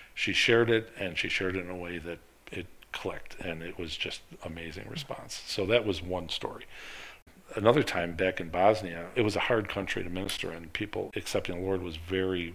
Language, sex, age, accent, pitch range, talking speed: English, male, 50-69, American, 85-105 Hz, 205 wpm